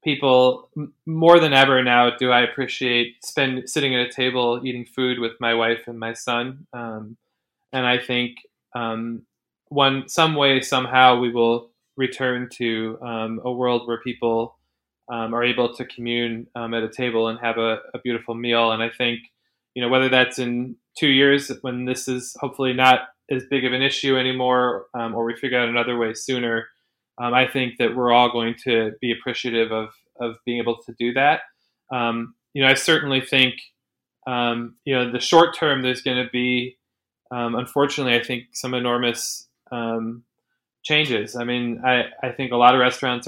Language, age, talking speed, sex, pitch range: English, 20-39, 185 wpm, male, 115-130 Hz